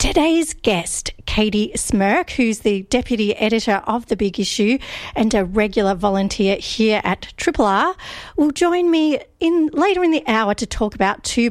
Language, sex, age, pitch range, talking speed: English, female, 40-59, 195-240 Hz, 165 wpm